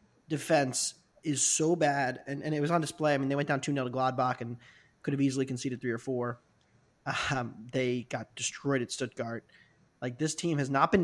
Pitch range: 135-170 Hz